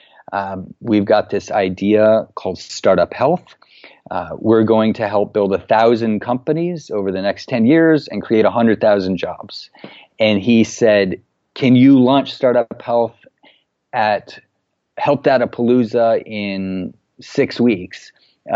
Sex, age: male, 40-59